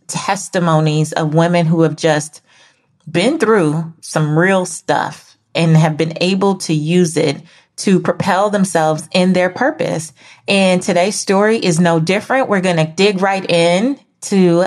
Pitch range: 155-185 Hz